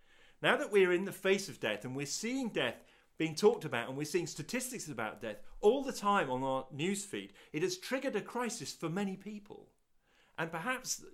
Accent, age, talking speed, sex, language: British, 40-59, 205 wpm, male, English